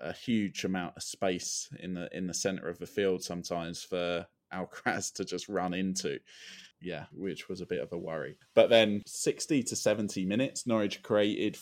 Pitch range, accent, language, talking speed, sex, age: 95-110 Hz, British, English, 185 wpm, male, 20-39